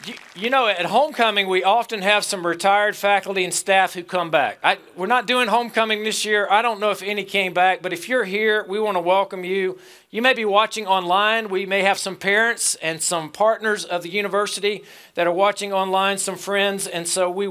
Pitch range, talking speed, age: 185-220 Hz, 215 wpm, 40-59